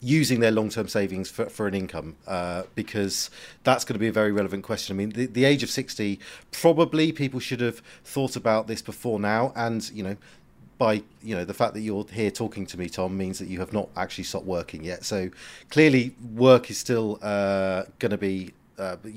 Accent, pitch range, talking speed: British, 95-125 Hz, 215 wpm